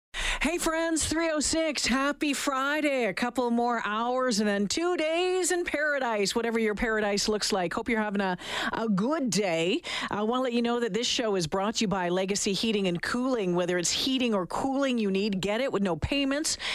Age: 40-59